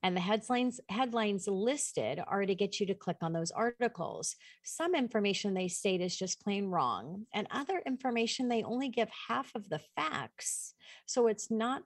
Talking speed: 175 wpm